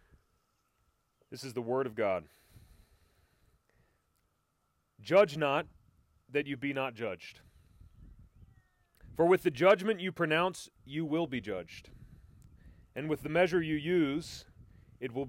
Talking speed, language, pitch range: 120 wpm, English, 110-165 Hz